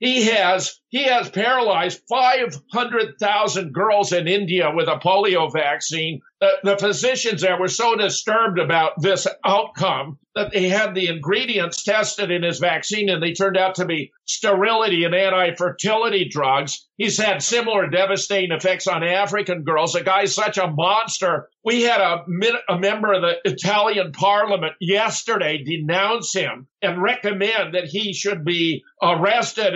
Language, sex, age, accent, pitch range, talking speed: English, male, 50-69, American, 170-210 Hz, 150 wpm